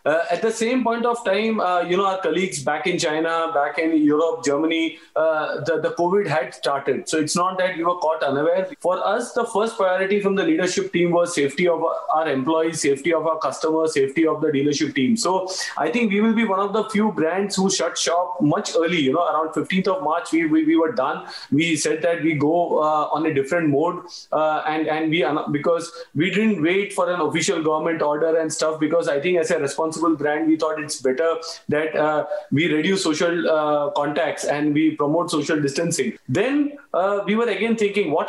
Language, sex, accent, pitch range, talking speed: English, male, Indian, 155-195 Hz, 215 wpm